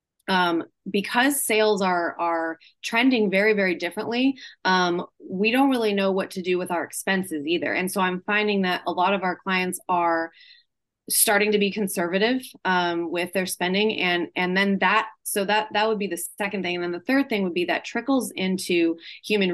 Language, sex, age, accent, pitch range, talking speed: English, female, 20-39, American, 180-210 Hz, 195 wpm